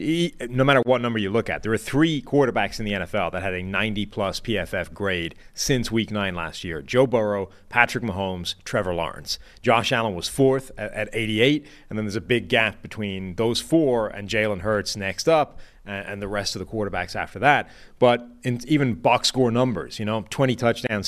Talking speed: 195 wpm